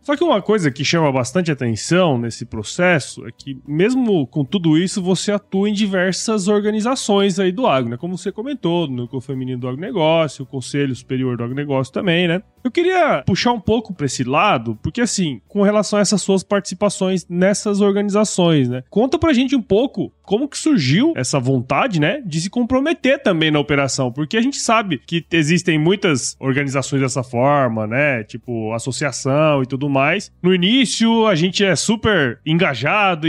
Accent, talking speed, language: Brazilian, 175 wpm, Portuguese